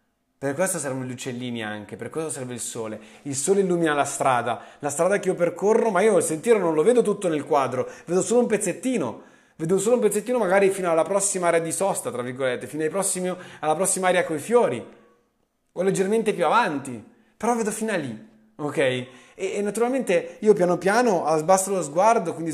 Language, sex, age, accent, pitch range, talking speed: Italian, male, 30-49, native, 140-195 Hz, 210 wpm